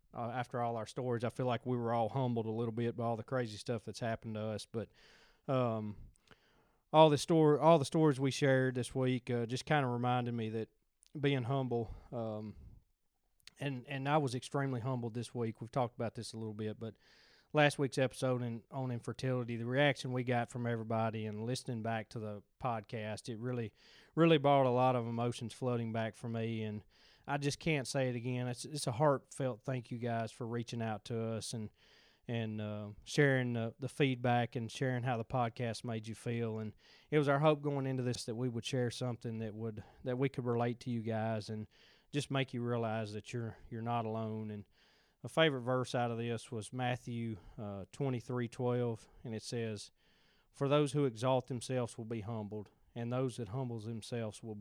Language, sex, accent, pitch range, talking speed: English, male, American, 110-130 Hz, 205 wpm